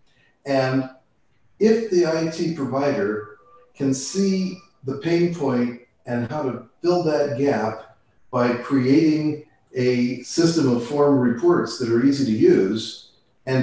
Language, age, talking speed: English, 50-69, 130 wpm